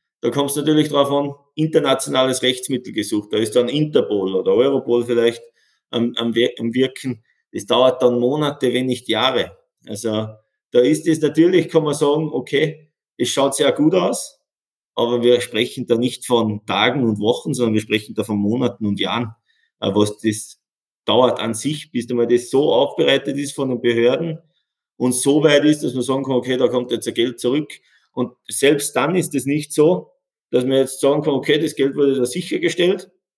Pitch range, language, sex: 120-150 Hz, German, male